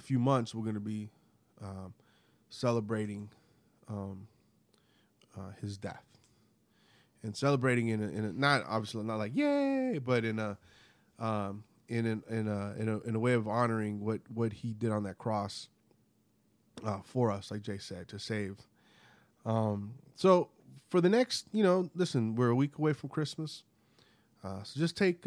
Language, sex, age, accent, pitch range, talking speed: English, male, 20-39, American, 105-125 Hz, 170 wpm